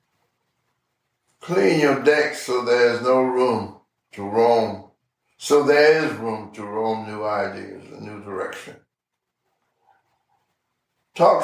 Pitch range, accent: 115-150 Hz, American